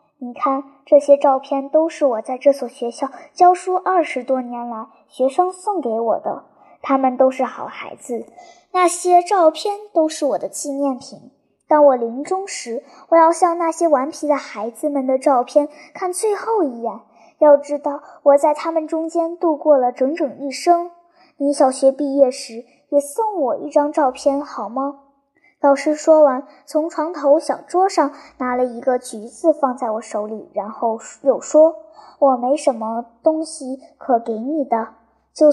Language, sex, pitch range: Chinese, male, 260-325 Hz